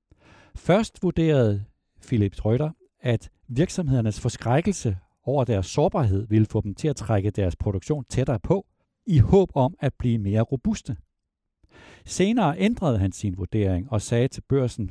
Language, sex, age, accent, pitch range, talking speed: Danish, male, 60-79, native, 100-140 Hz, 145 wpm